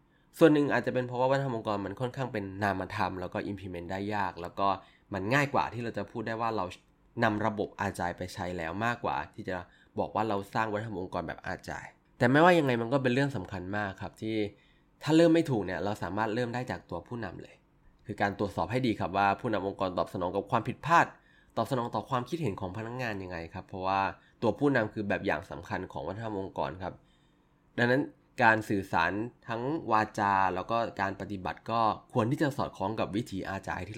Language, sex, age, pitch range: Thai, male, 20-39, 95-120 Hz